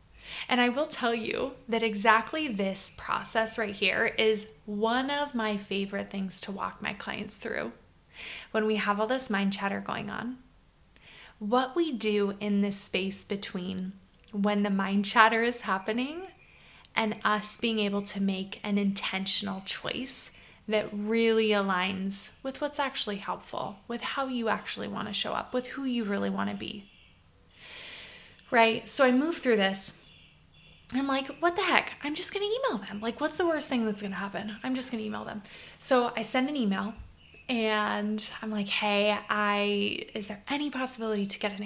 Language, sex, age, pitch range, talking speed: English, female, 20-39, 200-250 Hz, 180 wpm